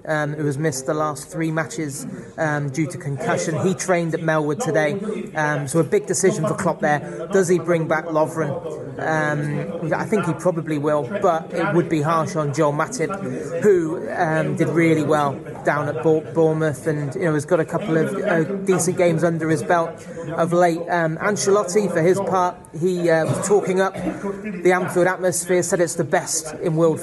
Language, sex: English, male